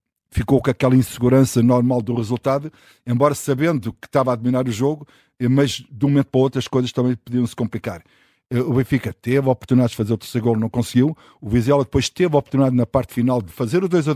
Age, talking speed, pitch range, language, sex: 50-69, 220 wpm, 120-135 Hz, Portuguese, male